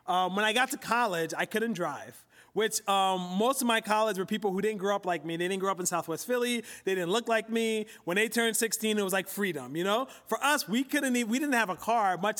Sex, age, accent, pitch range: male, 30-49, American, 195-250 Hz